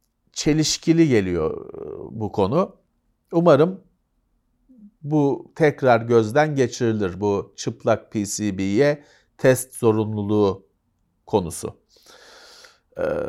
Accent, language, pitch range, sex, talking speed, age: native, Turkish, 110-170 Hz, male, 70 wpm, 40-59